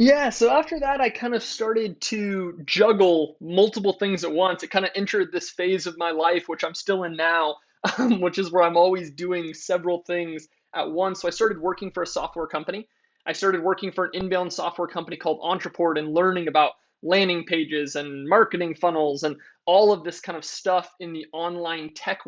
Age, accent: 20-39, American